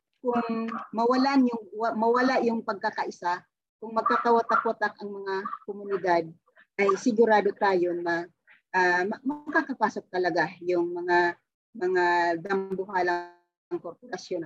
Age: 40-59